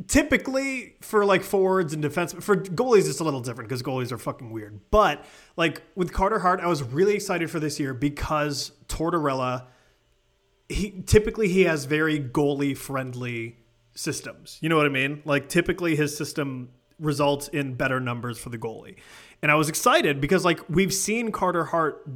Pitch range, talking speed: 130-175 Hz, 175 wpm